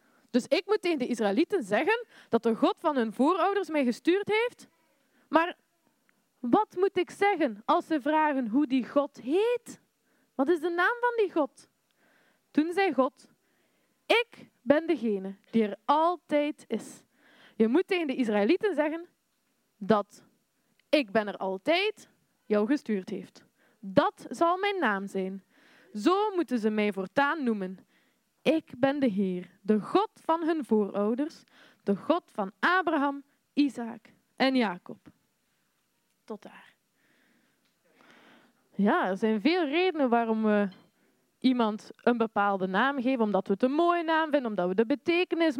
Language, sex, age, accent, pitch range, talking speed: Dutch, female, 20-39, Dutch, 225-320 Hz, 145 wpm